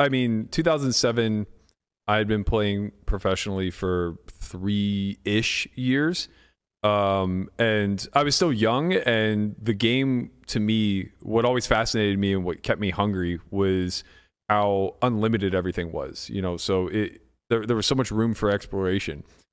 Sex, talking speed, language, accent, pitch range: male, 150 wpm, English, American, 95-115 Hz